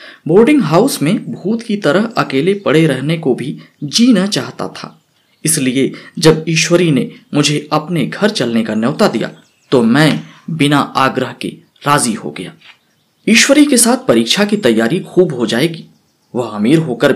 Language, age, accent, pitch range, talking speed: Hindi, 20-39, native, 125-190 Hz, 155 wpm